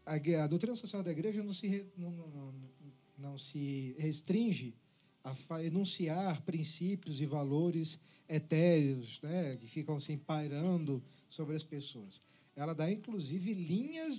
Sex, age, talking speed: male, 50-69, 120 wpm